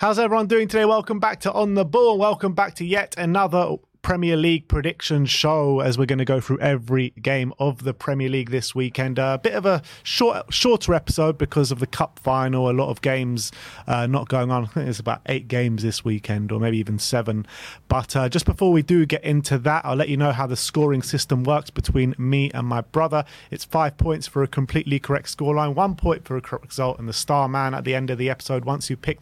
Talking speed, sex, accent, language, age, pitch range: 240 wpm, male, British, English, 30-49, 130-165 Hz